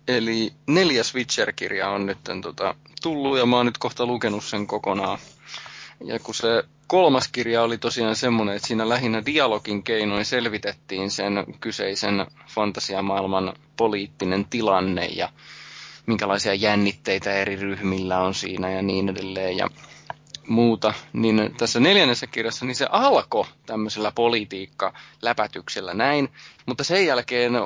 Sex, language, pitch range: male, Finnish, 100-130 Hz